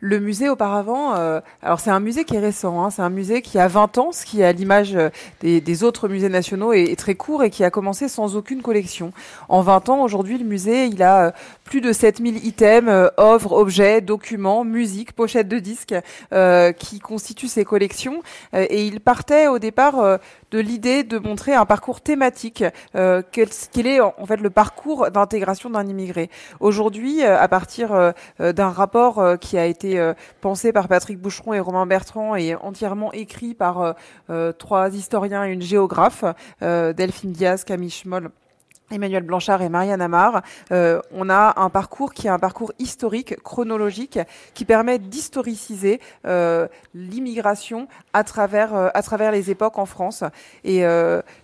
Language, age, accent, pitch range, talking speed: French, 30-49, French, 185-230 Hz, 185 wpm